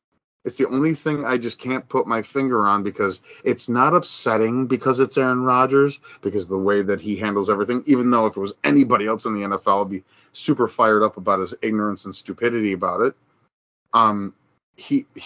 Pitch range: 105-135 Hz